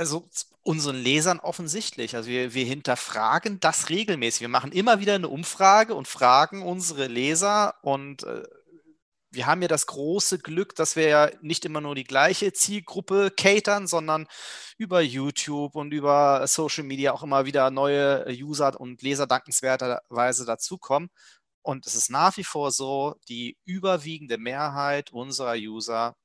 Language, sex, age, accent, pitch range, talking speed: German, male, 30-49, German, 130-180 Hz, 150 wpm